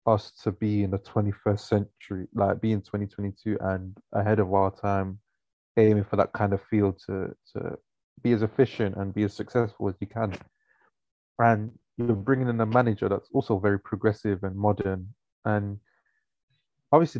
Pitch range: 100-120 Hz